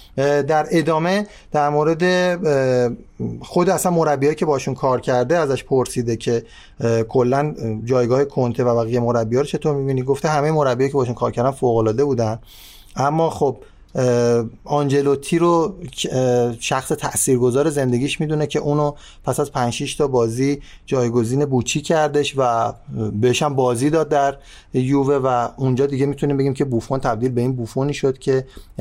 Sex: male